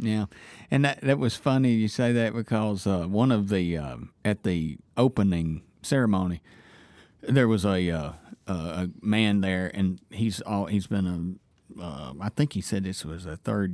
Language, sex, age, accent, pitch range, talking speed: English, male, 40-59, American, 90-110 Hz, 185 wpm